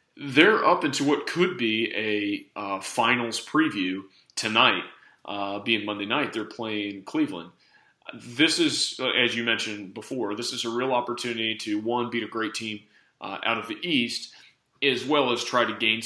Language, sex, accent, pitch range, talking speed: English, male, American, 100-125 Hz, 170 wpm